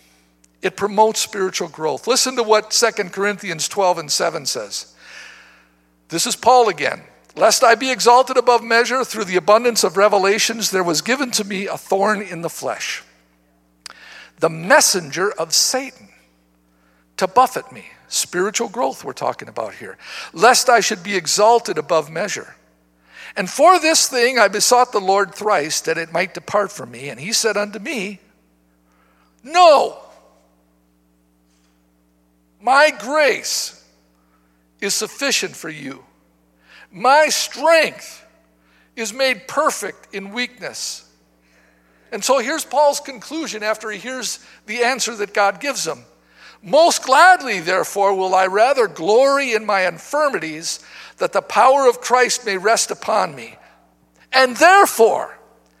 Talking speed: 140 wpm